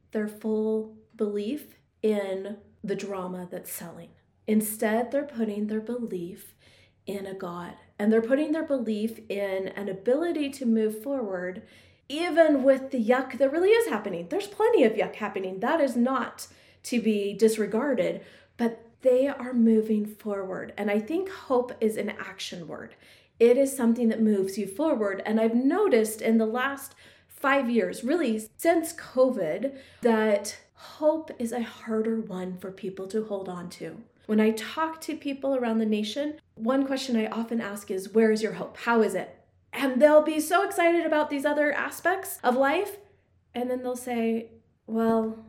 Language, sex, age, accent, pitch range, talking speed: English, female, 30-49, American, 210-275 Hz, 165 wpm